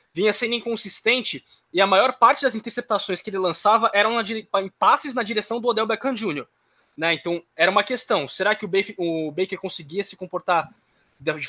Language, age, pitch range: Portuguese, 20-39, 185-235 Hz